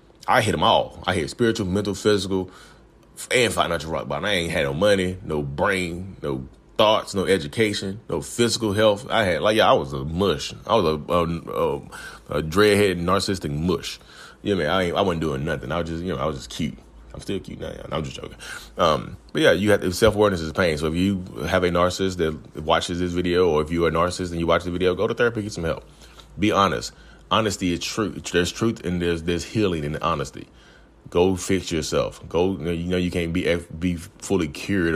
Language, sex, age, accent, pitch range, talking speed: English, male, 30-49, American, 75-95 Hz, 230 wpm